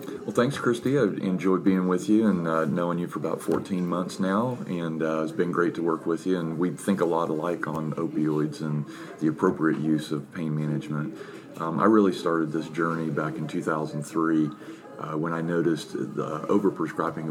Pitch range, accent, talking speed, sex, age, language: 75-85 Hz, American, 195 wpm, male, 40-59, English